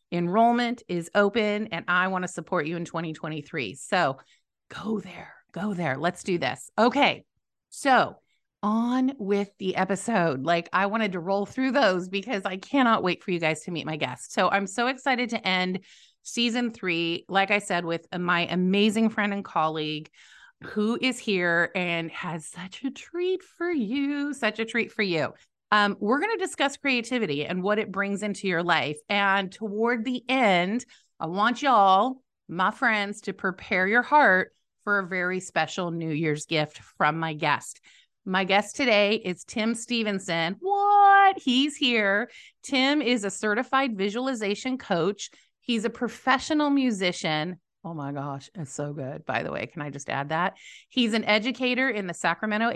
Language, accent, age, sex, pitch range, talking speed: English, American, 30-49, female, 175-240 Hz, 170 wpm